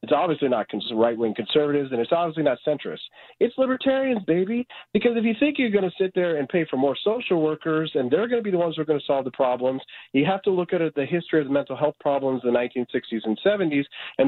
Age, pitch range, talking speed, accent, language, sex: 40-59, 130-170 Hz, 255 wpm, American, English, male